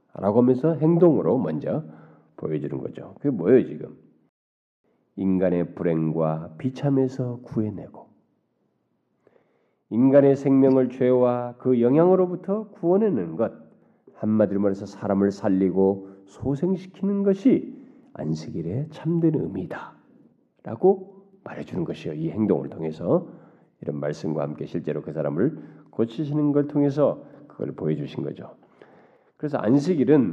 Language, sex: Korean, male